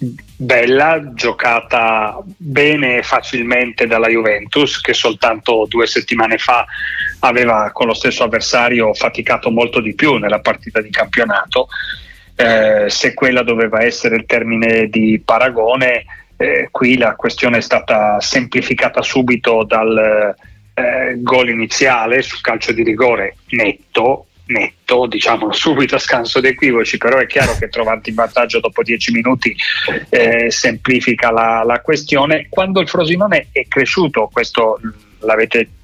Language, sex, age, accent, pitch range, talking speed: Italian, male, 30-49, native, 110-130 Hz, 130 wpm